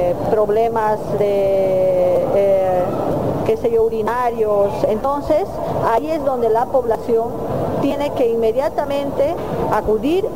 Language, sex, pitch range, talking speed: Spanish, female, 215-270 Hz, 100 wpm